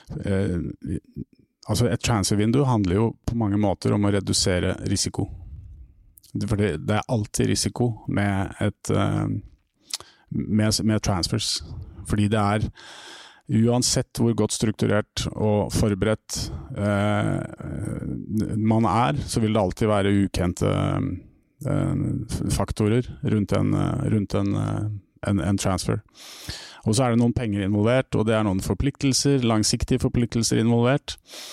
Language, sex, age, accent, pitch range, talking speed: Danish, male, 30-49, Norwegian, 100-120 Hz, 130 wpm